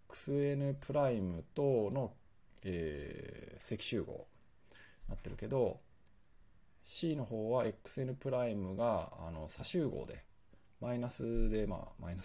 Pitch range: 95-125 Hz